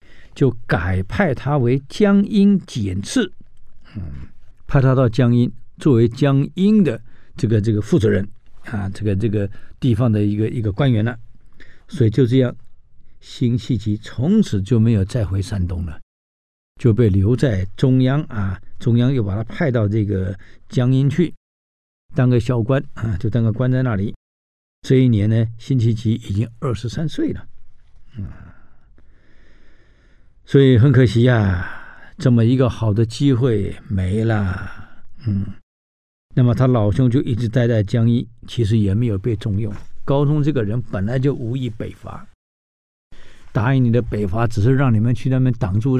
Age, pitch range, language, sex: 60-79, 105-130 Hz, Chinese, male